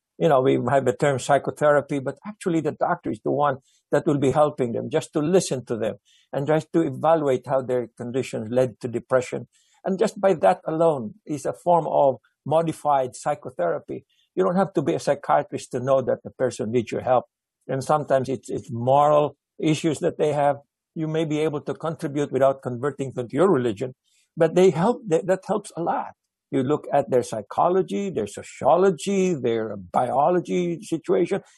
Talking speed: 190 wpm